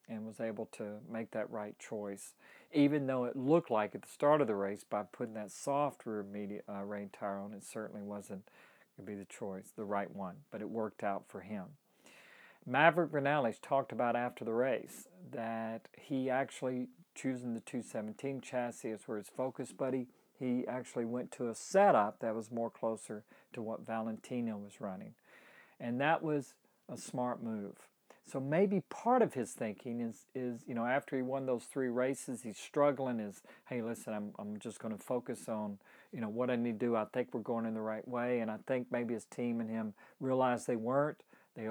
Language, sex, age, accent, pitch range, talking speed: English, male, 50-69, American, 110-130 Hz, 200 wpm